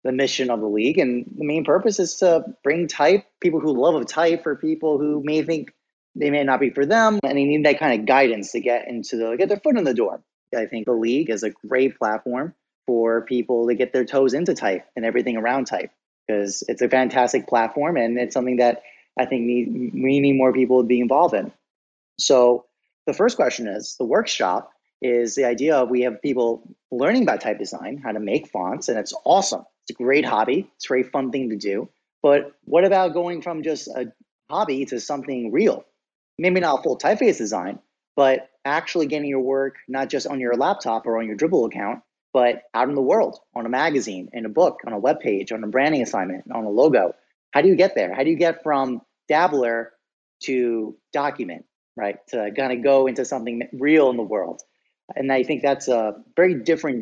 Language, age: English, 30-49